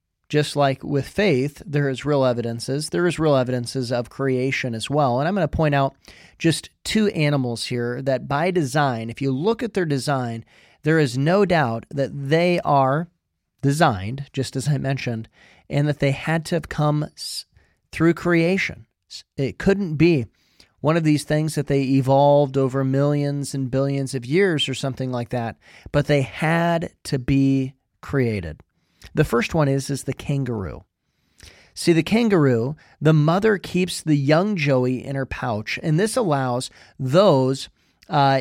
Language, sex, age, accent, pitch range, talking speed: English, male, 40-59, American, 130-160 Hz, 165 wpm